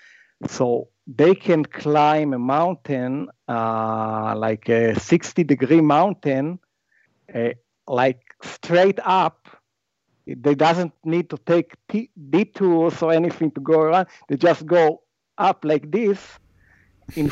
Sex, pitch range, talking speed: male, 125-160 Hz, 120 wpm